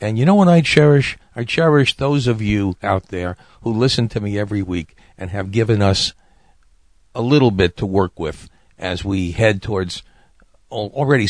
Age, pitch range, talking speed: 50-69, 95-115 Hz, 180 wpm